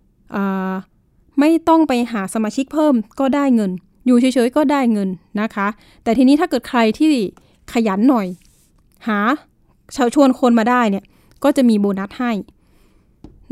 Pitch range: 205-260 Hz